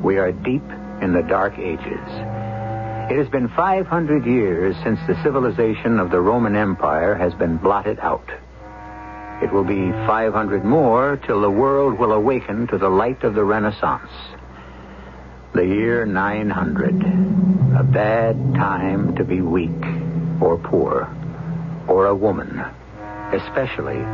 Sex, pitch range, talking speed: male, 100-160 Hz, 135 wpm